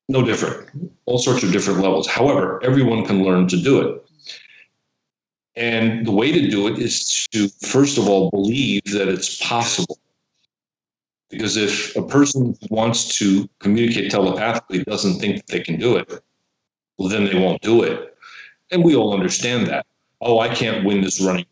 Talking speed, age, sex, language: 170 wpm, 40-59, male, English